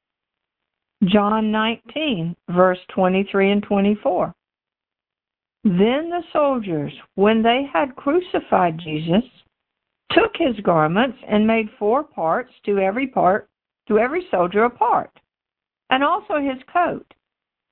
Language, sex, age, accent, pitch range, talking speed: English, female, 60-79, American, 185-255 Hz, 110 wpm